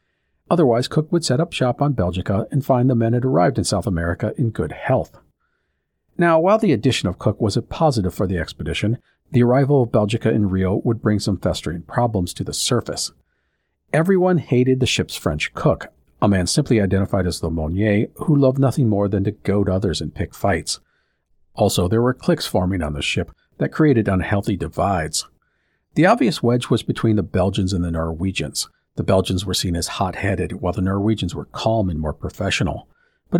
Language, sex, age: English, male, 50-69